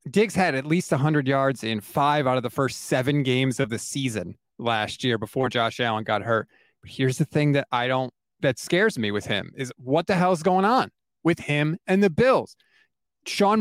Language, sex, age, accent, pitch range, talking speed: English, male, 30-49, American, 150-210 Hz, 215 wpm